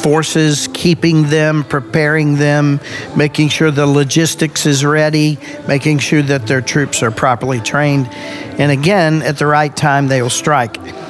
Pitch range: 140-170 Hz